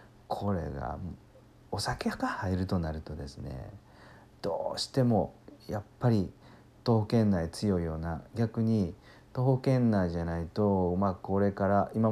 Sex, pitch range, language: male, 85-110 Hz, Japanese